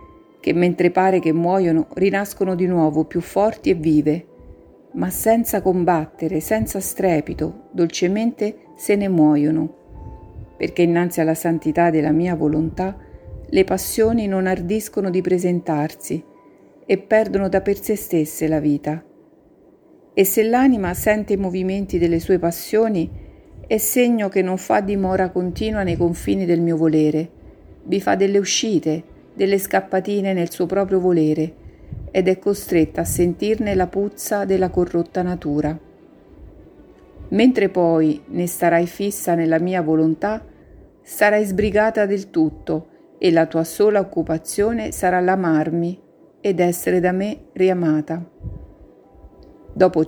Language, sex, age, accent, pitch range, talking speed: Italian, female, 50-69, native, 165-200 Hz, 130 wpm